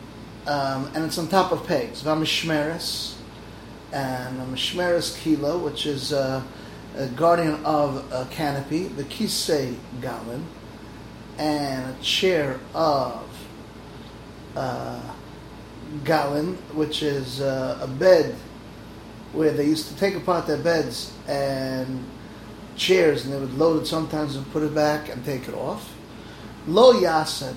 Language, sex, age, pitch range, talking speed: English, male, 30-49, 130-160 Hz, 135 wpm